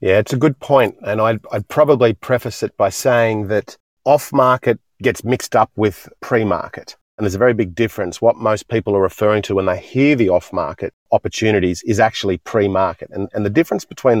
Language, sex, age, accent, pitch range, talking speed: English, male, 40-59, Australian, 100-115 Hz, 195 wpm